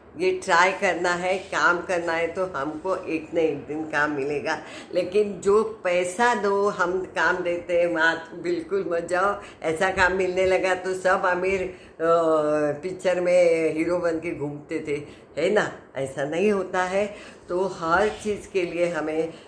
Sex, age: female, 50-69